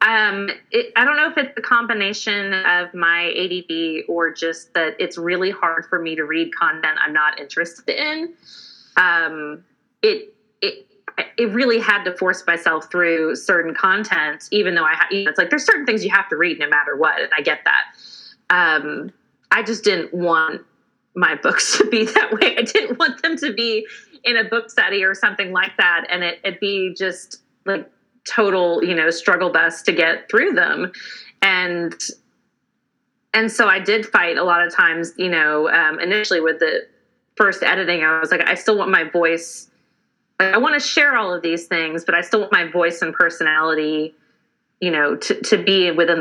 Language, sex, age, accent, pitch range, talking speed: English, female, 30-49, American, 170-235 Hz, 185 wpm